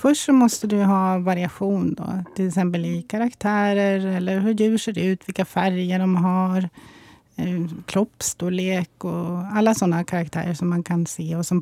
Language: Swedish